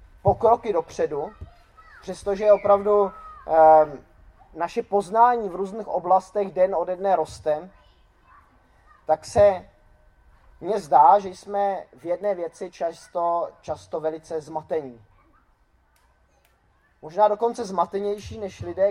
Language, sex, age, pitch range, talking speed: Czech, male, 20-39, 155-195 Hz, 105 wpm